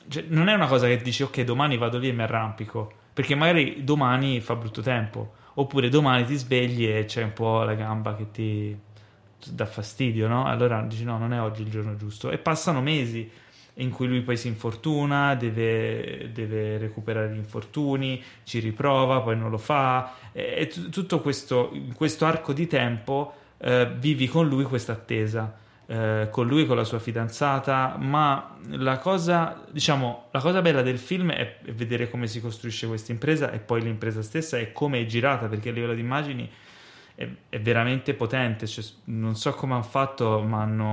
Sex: male